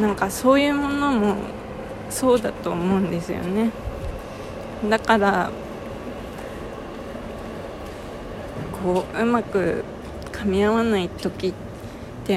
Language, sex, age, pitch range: Japanese, female, 20-39, 185-225 Hz